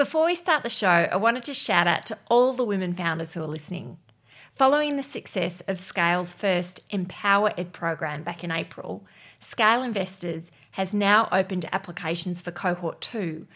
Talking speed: 175 wpm